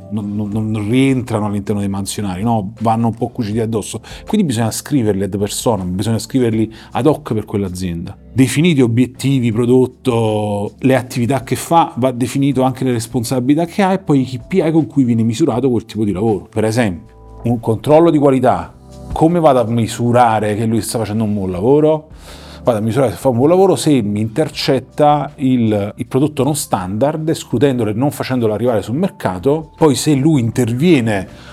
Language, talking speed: Italian, 175 wpm